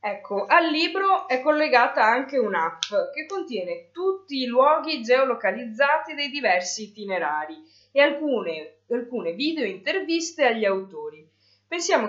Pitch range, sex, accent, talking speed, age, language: 195-280 Hz, female, native, 115 wpm, 20-39, Italian